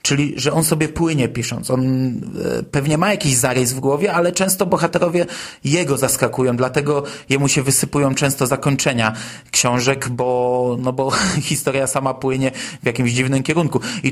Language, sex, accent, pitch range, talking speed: Polish, male, native, 130-170 Hz, 155 wpm